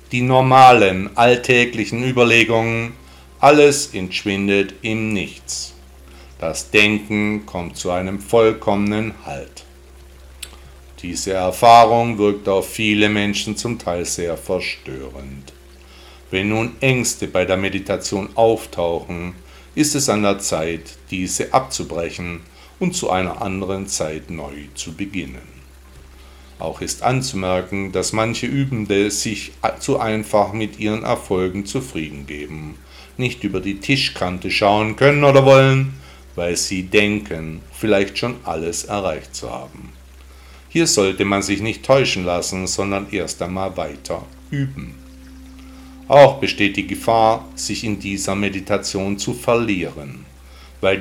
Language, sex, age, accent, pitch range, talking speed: German, male, 50-69, German, 70-110 Hz, 120 wpm